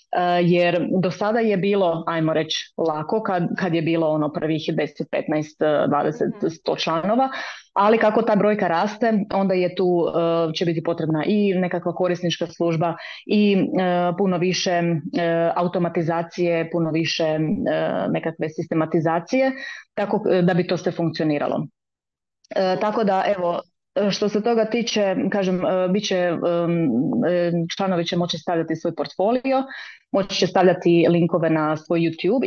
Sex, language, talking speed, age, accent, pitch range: female, Croatian, 130 wpm, 30-49, native, 165-195 Hz